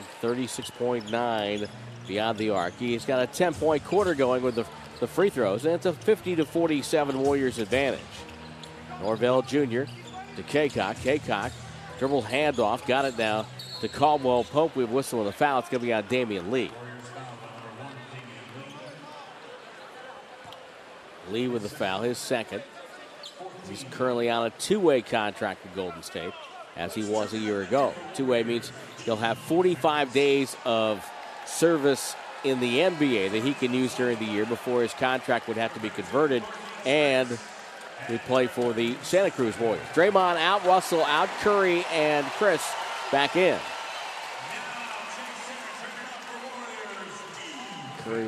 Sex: male